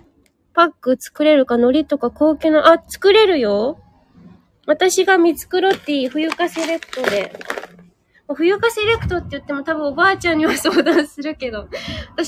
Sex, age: female, 20-39